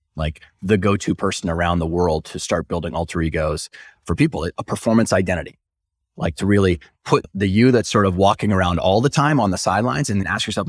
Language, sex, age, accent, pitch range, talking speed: English, male, 30-49, American, 90-115 Hz, 215 wpm